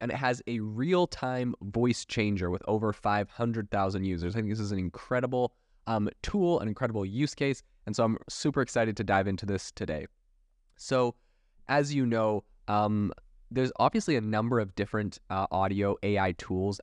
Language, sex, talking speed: English, male, 170 wpm